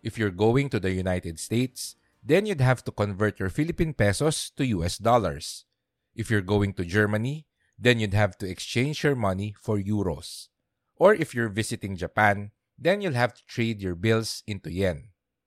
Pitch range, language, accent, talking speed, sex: 100-130 Hz, English, Filipino, 180 wpm, male